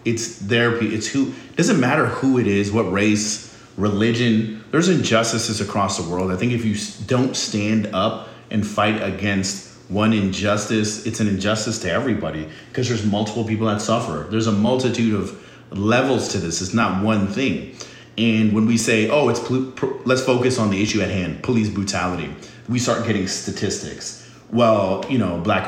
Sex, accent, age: male, American, 30-49